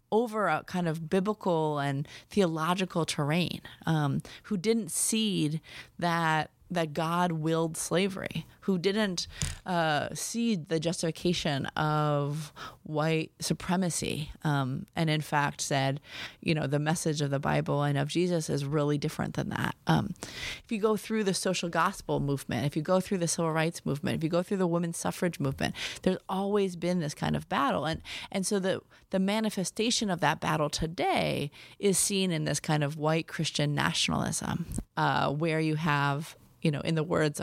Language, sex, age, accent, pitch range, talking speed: English, female, 30-49, American, 150-185 Hz, 170 wpm